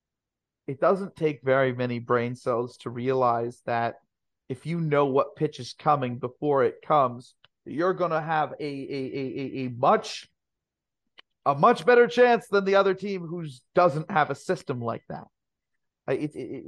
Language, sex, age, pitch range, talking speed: English, male, 40-59, 130-175 Hz, 165 wpm